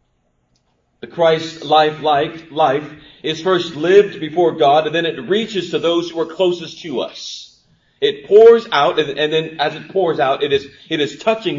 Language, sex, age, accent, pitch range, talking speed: English, male, 40-59, American, 145-195 Hz, 175 wpm